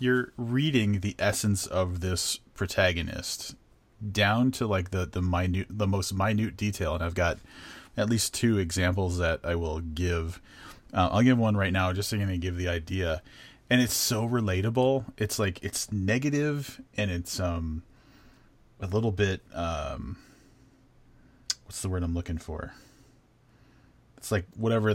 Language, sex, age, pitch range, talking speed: English, male, 30-49, 90-115 Hz, 150 wpm